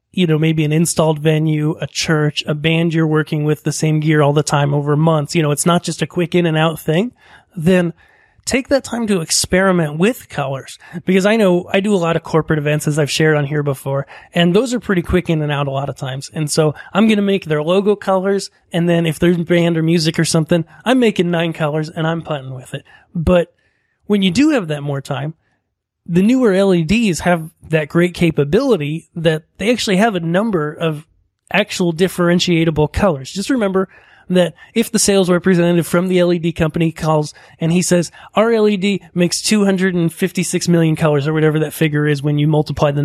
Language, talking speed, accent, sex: English, 210 wpm, American, male